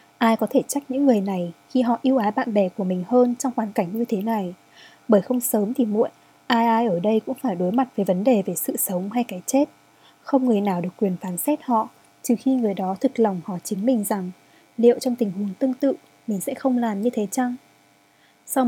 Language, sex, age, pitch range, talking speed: Vietnamese, female, 20-39, 210-260 Hz, 245 wpm